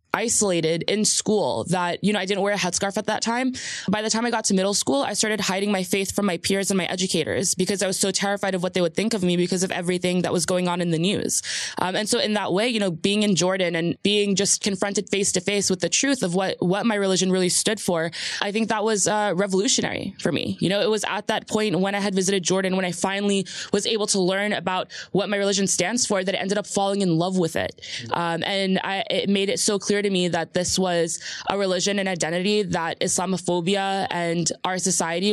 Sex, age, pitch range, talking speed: female, 20-39, 180-205 Hz, 250 wpm